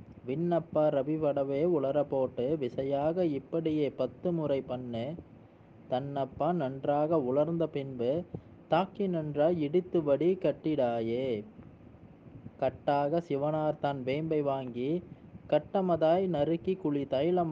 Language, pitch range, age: Tamil, 130-165 Hz, 20-39